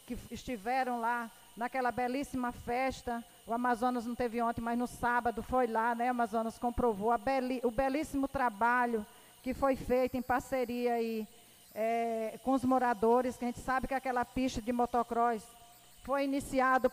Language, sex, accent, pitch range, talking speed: Portuguese, female, Brazilian, 235-265 Hz, 165 wpm